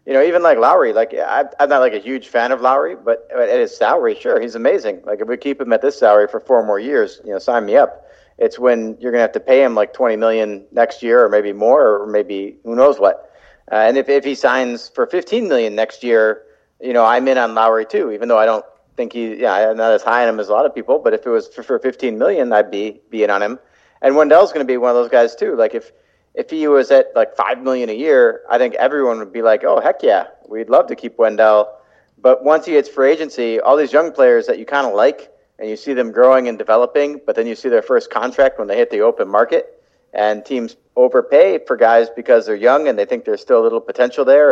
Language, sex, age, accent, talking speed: English, male, 40-59, American, 265 wpm